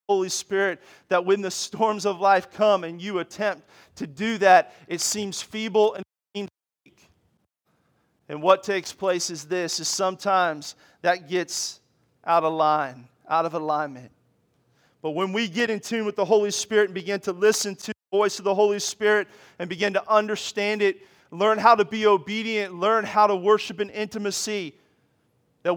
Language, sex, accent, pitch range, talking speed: English, male, American, 180-210 Hz, 170 wpm